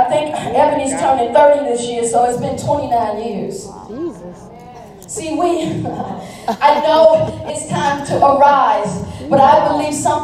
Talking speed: 140 wpm